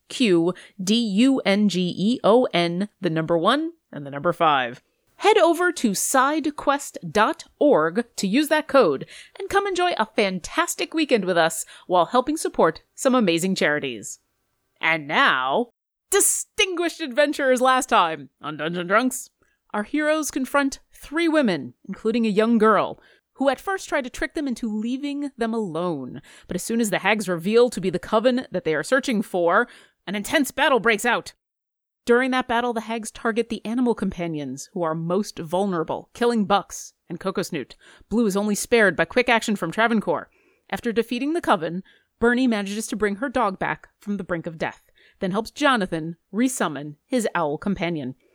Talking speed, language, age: 160 wpm, English, 30-49